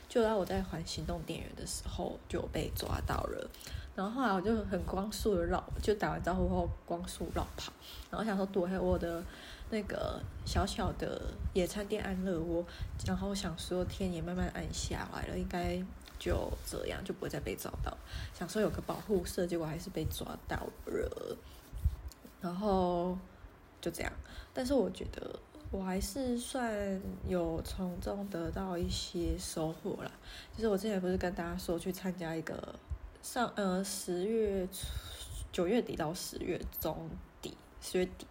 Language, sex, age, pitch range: Chinese, female, 20-39, 175-205 Hz